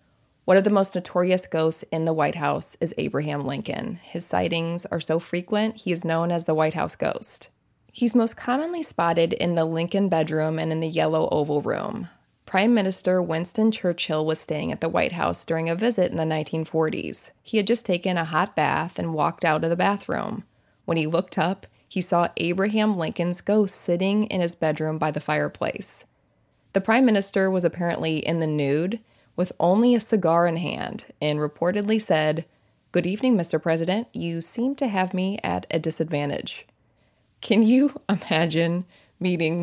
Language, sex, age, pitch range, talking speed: English, female, 20-39, 155-195 Hz, 180 wpm